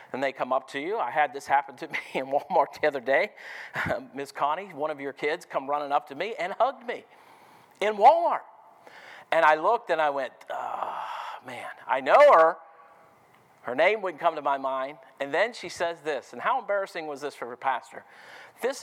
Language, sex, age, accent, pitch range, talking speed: English, male, 50-69, American, 155-245 Hz, 210 wpm